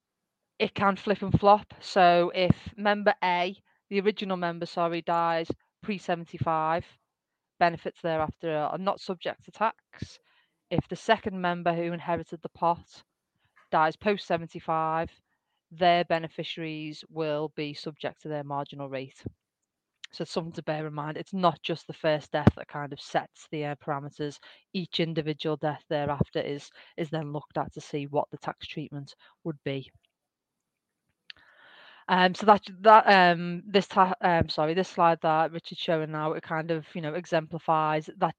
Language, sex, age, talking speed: English, female, 30-49, 155 wpm